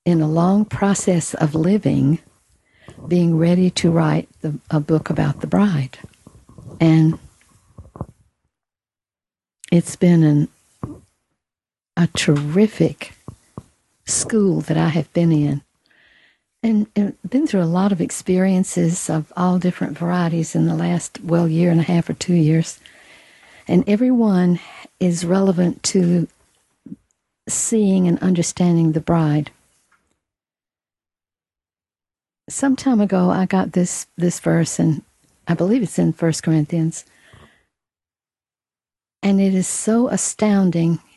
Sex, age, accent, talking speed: female, 60-79, American, 120 wpm